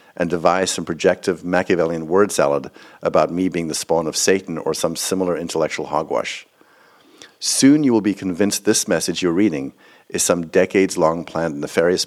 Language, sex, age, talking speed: English, male, 50-69, 170 wpm